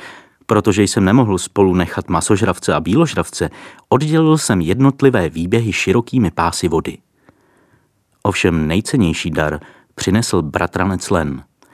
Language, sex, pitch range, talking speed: Czech, male, 85-110 Hz, 105 wpm